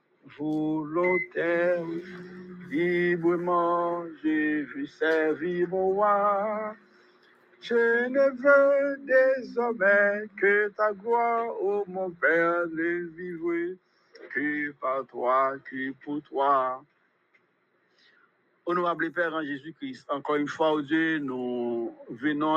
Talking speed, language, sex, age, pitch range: 95 wpm, English, male, 60-79, 145-190 Hz